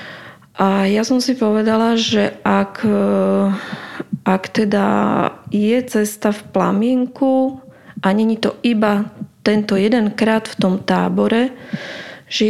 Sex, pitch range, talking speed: female, 190-220 Hz, 110 wpm